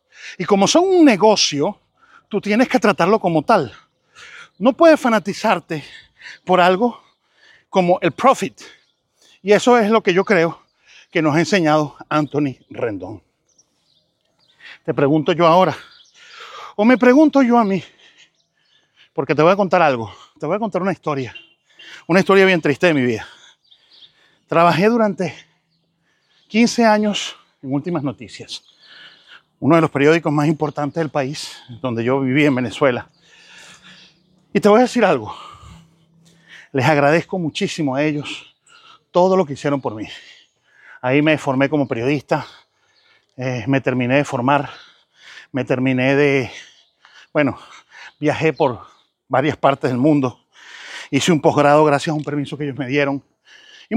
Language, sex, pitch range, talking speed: Spanish, male, 145-210 Hz, 145 wpm